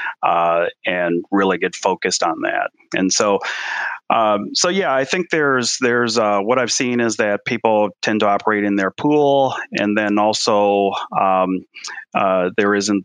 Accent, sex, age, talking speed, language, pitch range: American, male, 30-49, 165 wpm, English, 100-120 Hz